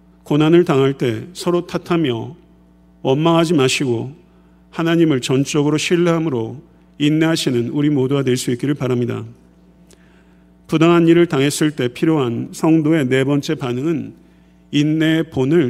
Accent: native